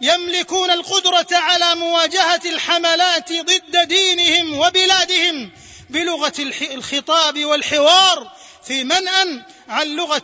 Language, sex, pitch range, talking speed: Arabic, male, 255-345 Hz, 90 wpm